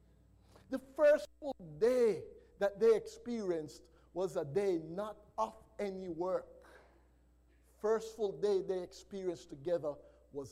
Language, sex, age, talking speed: English, male, 50-69, 120 wpm